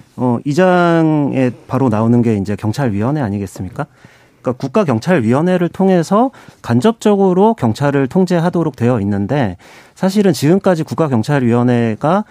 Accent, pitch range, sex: native, 115-170 Hz, male